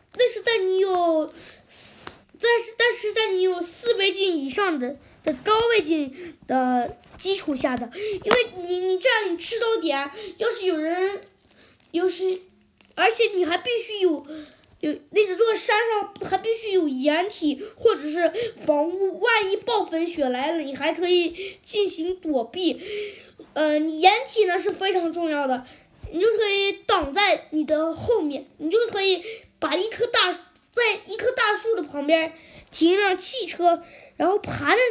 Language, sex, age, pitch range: Chinese, female, 20-39, 315-420 Hz